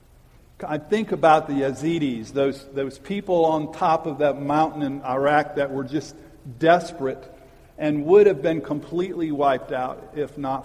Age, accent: 50-69, American